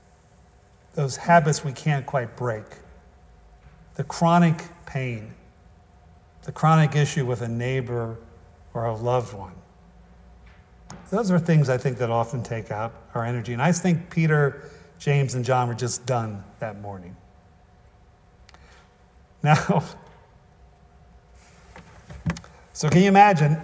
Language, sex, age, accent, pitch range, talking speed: English, male, 50-69, American, 115-165 Hz, 120 wpm